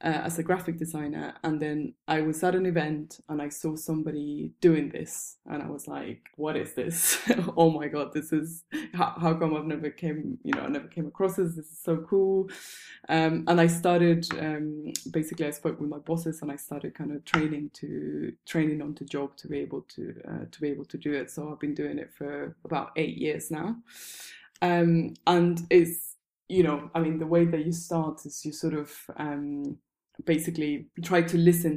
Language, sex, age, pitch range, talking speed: English, female, 20-39, 150-170 Hz, 210 wpm